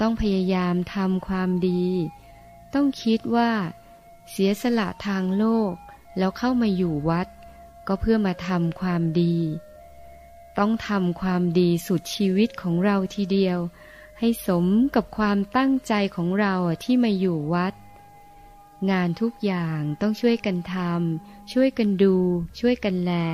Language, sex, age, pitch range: Thai, female, 20-39, 175-220 Hz